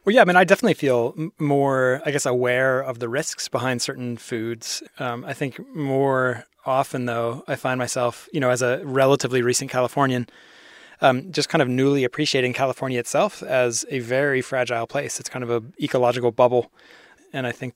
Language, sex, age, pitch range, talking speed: English, male, 20-39, 120-135 Hz, 185 wpm